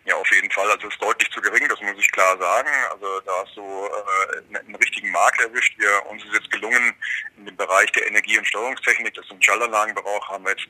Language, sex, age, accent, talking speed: German, male, 40-59, German, 245 wpm